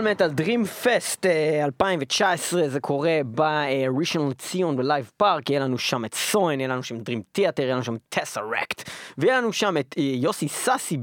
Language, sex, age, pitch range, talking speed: Hebrew, male, 20-39, 135-225 Hz, 160 wpm